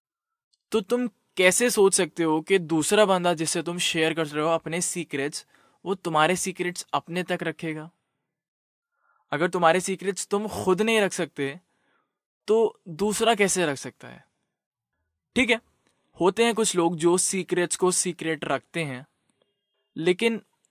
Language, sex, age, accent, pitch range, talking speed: Hindi, male, 20-39, native, 140-185 Hz, 145 wpm